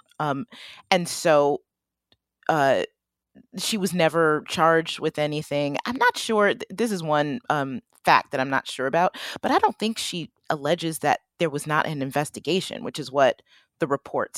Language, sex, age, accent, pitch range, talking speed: English, female, 30-49, American, 145-190 Hz, 165 wpm